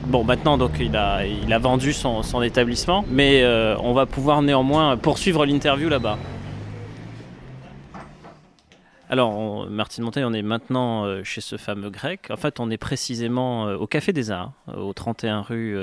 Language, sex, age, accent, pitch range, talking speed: French, male, 20-39, French, 110-145 Hz, 160 wpm